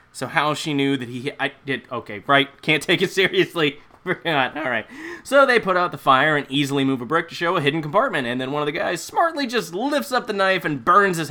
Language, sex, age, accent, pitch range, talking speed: English, male, 20-39, American, 135-205 Hz, 250 wpm